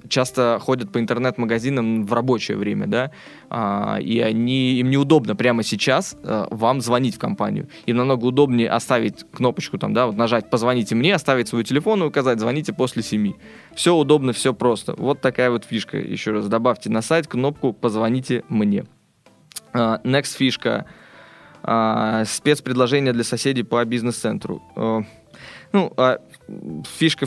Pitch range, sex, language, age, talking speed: 110-130 Hz, male, Russian, 20-39, 145 wpm